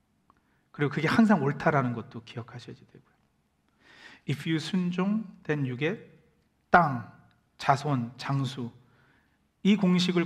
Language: Korean